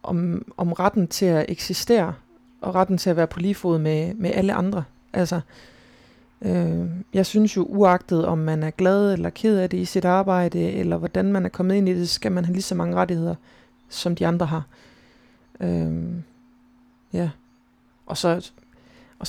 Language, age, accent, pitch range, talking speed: Danish, 30-49, native, 165-195 Hz, 185 wpm